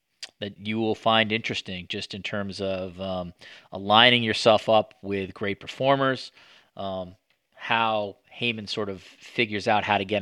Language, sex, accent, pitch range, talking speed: English, male, American, 95-115 Hz, 155 wpm